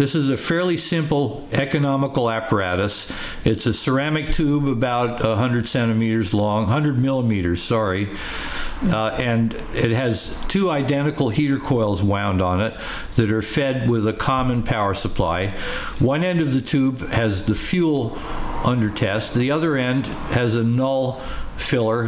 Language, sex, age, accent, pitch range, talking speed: English, male, 60-79, American, 110-135 Hz, 145 wpm